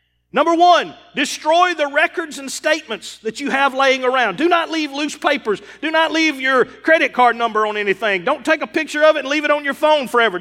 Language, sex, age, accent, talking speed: English, male, 40-59, American, 225 wpm